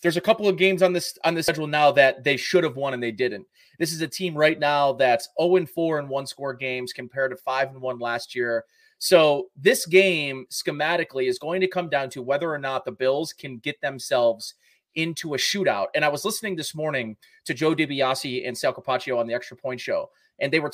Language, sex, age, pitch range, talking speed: English, male, 30-49, 140-185 Hz, 225 wpm